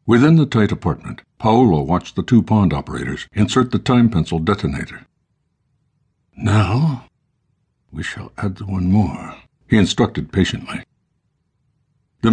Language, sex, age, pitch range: English, male, 60-79, 90-115 Hz